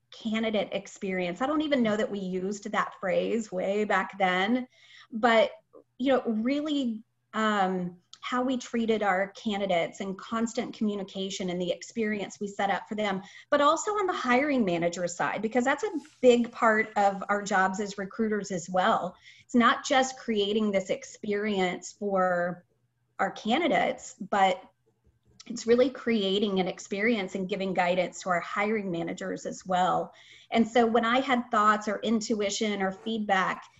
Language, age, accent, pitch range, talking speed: English, 30-49, American, 185-240 Hz, 155 wpm